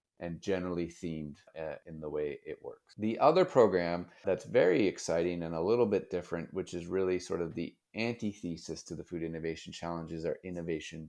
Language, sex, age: English, male, 30-49